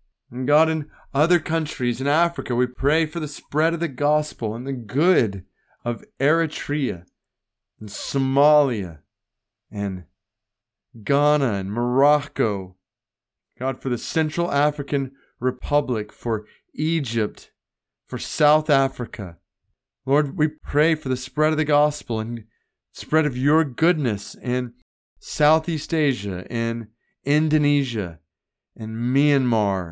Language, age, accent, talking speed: English, 30-49, American, 115 wpm